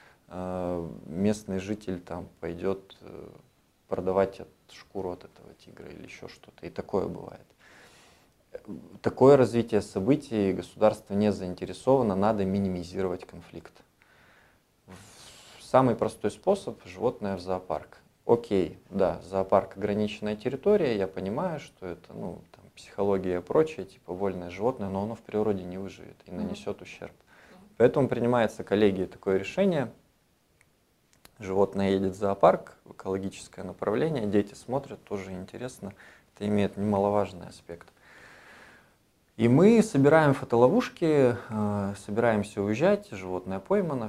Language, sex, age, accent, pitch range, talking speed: Russian, male, 20-39, native, 95-120 Hz, 110 wpm